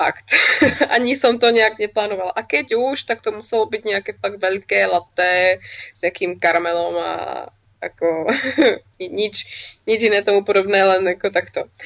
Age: 20-39